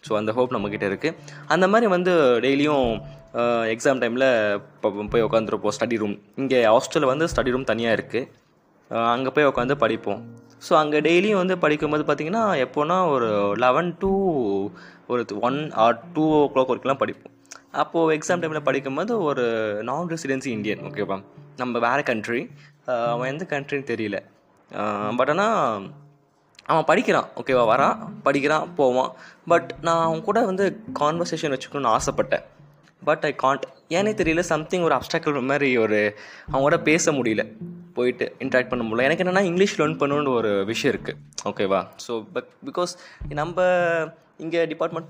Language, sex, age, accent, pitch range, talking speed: Tamil, male, 20-39, native, 125-170 Hz, 150 wpm